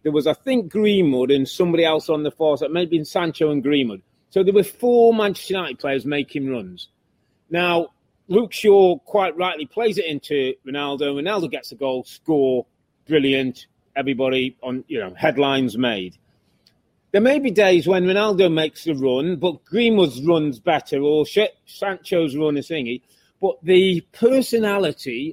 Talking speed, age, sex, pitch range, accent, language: 165 wpm, 30-49, male, 140-195 Hz, British, English